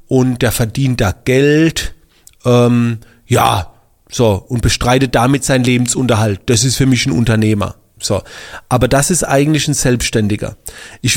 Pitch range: 120-145 Hz